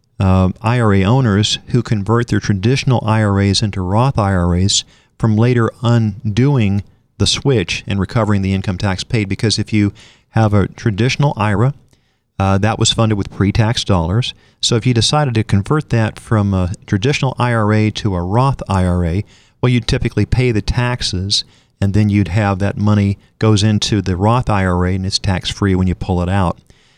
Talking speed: 170 wpm